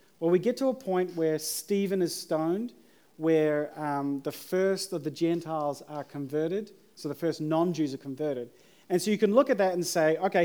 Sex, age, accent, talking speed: male, 40-59, Australian, 200 wpm